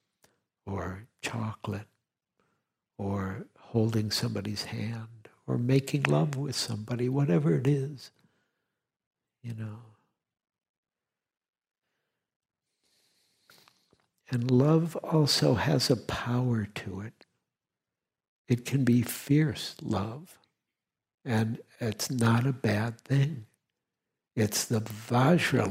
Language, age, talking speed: English, 60-79, 90 wpm